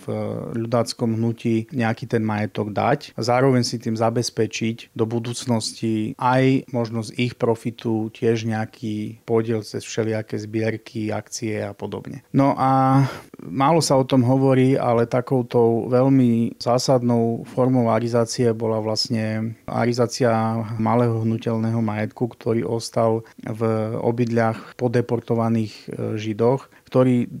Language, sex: Slovak, male